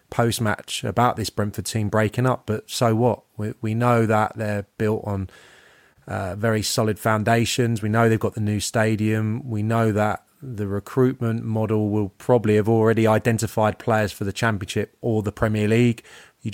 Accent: British